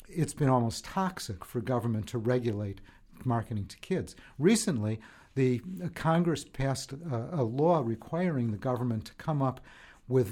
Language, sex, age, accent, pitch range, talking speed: English, male, 50-69, American, 120-160 Hz, 145 wpm